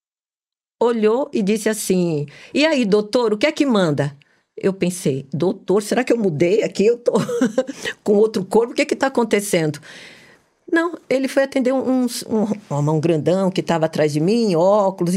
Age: 50-69